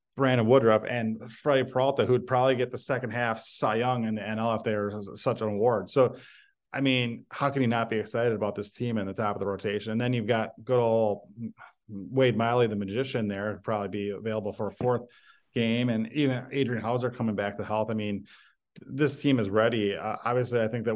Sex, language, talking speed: male, English, 220 wpm